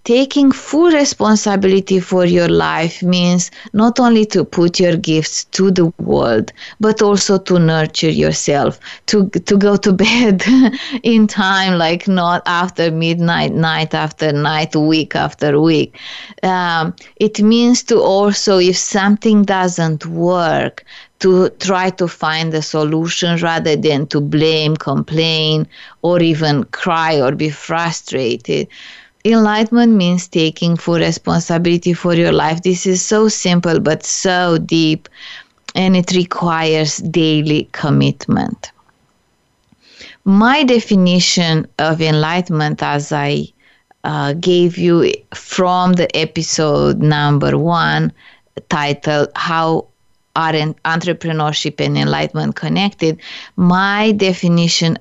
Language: English